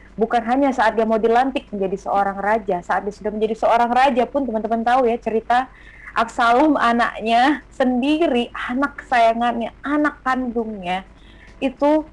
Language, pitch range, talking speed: Indonesian, 190-245 Hz, 140 wpm